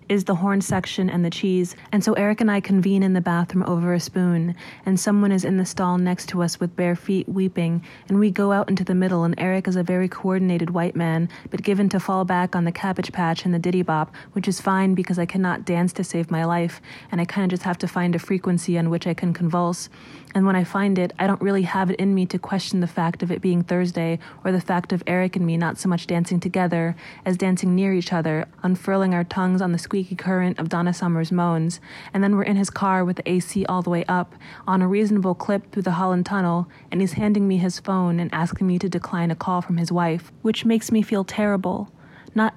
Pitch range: 170-195 Hz